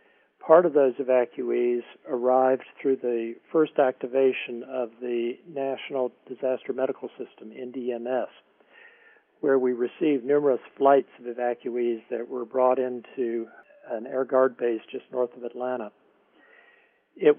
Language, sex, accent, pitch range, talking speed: English, male, American, 125-150 Hz, 125 wpm